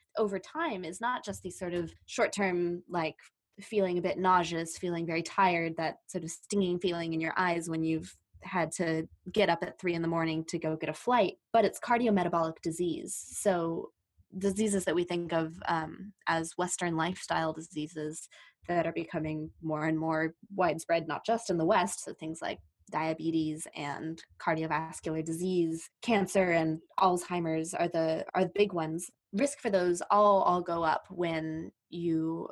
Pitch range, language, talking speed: 160-190 Hz, English, 170 wpm